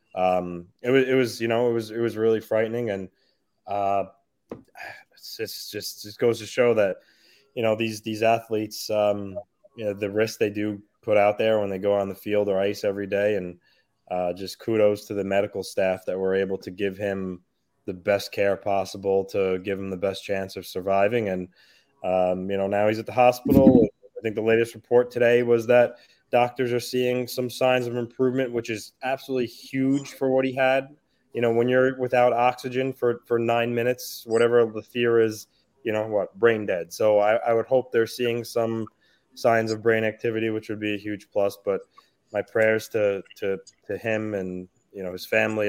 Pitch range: 100-120 Hz